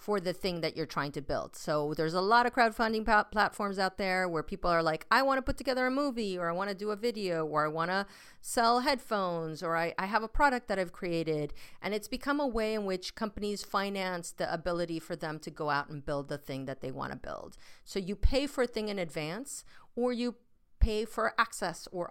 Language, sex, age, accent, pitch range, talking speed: English, female, 40-59, American, 160-210 Hz, 230 wpm